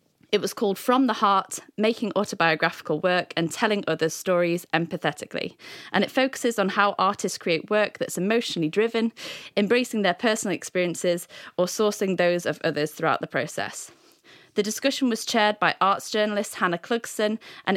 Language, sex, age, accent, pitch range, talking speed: English, female, 20-39, British, 170-225 Hz, 160 wpm